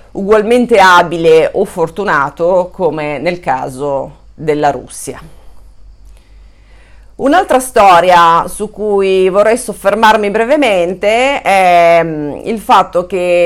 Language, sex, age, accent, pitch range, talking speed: Italian, female, 40-59, native, 150-190 Hz, 90 wpm